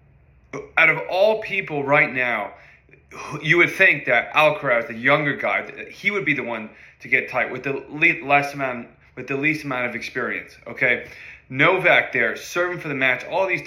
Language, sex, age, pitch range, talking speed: English, male, 20-39, 120-150 Hz, 180 wpm